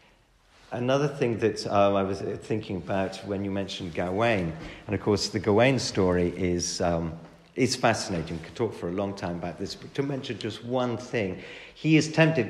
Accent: British